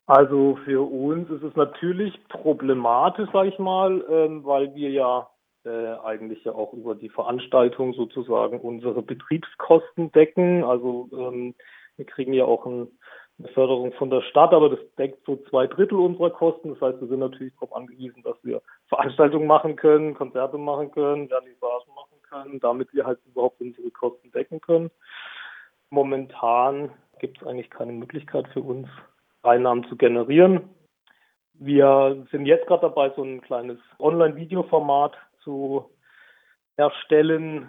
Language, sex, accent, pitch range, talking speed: German, male, German, 125-160 Hz, 145 wpm